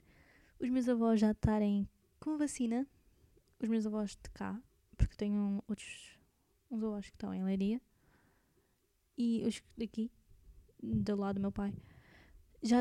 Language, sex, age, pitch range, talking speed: Portuguese, female, 10-29, 210-240 Hz, 140 wpm